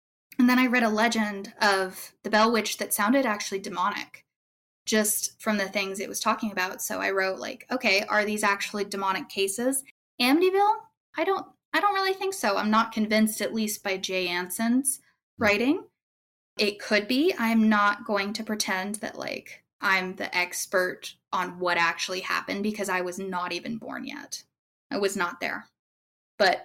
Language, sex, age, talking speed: English, female, 10-29, 175 wpm